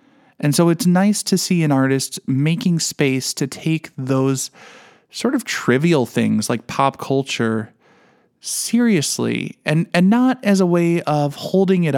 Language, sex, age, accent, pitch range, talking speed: English, male, 20-39, American, 125-170 Hz, 150 wpm